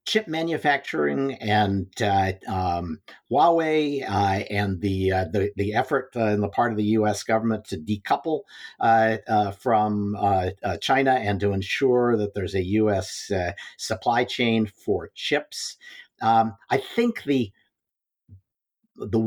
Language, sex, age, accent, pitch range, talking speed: English, male, 50-69, American, 100-135 Hz, 145 wpm